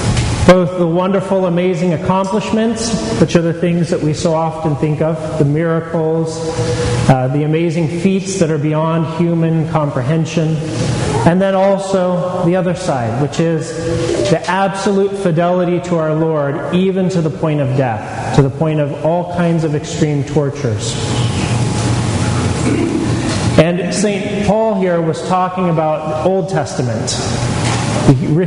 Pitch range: 150-180 Hz